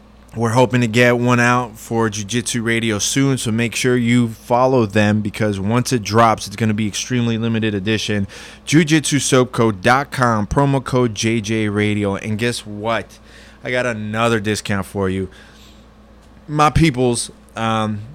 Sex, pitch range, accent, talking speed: male, 110-125 Hz, American, 145 wpm